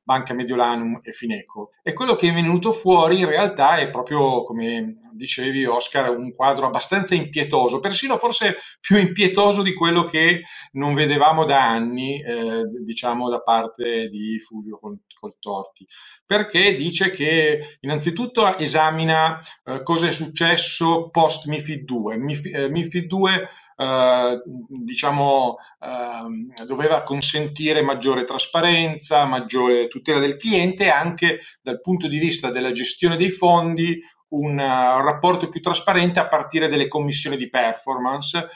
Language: Italian